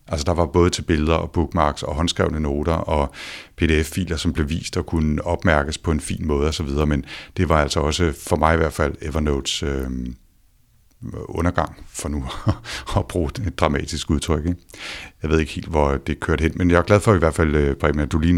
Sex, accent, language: male, native, Danish